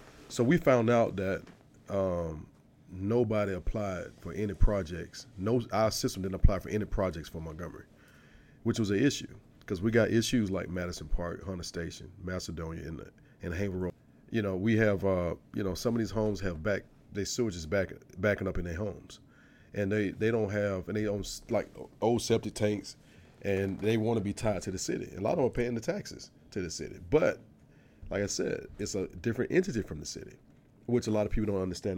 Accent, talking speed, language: American, 205 wpm, English